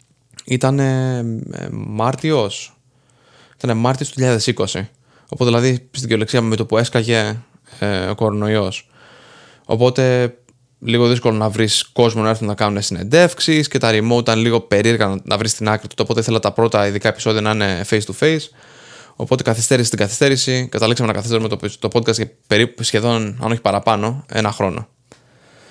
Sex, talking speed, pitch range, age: male, 165 wpm, 110-125 Hz, 20-39